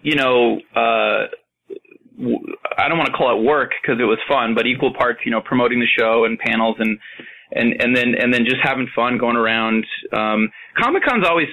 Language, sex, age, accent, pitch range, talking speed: English, male, 20-39, American, 115-135 Hz, 205 wpm